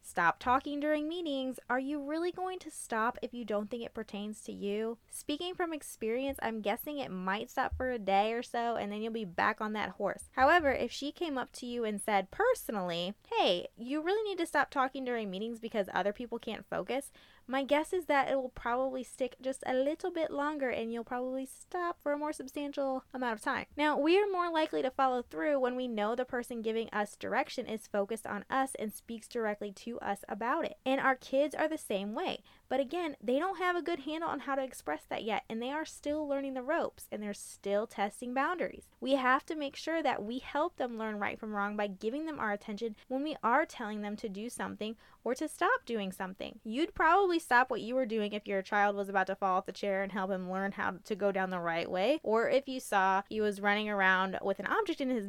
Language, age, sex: English, 20-39, female